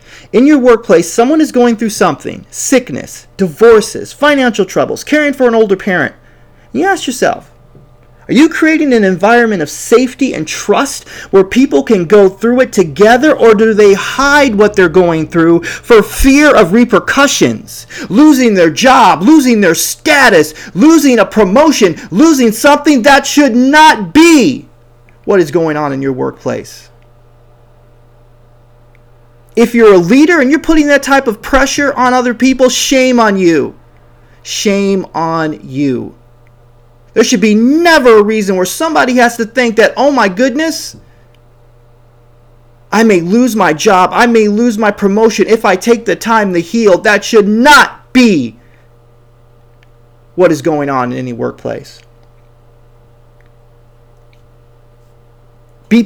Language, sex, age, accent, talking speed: English, male, 30-49, American, 145 wpm